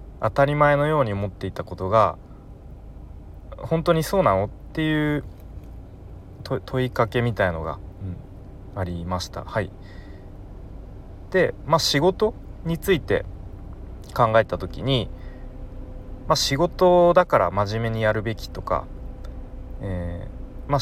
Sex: male